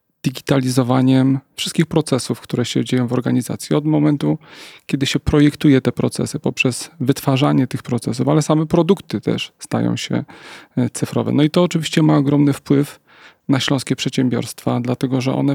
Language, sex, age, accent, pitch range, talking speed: Polish, male, 30-49, native, 130-145 Hz, 150 wpm